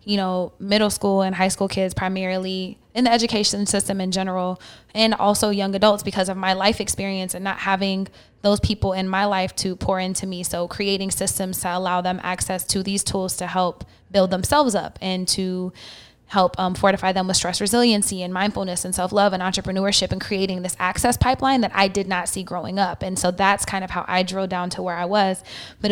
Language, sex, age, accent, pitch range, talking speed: English, female, 10-29, American, 185-205 Hz, 215 wpm